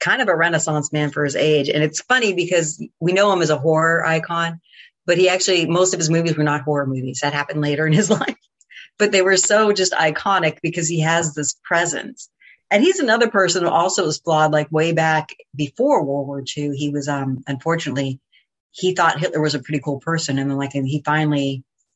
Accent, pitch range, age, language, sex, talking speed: American, 140-165 Hz, 30-49, English, female, 220 wpm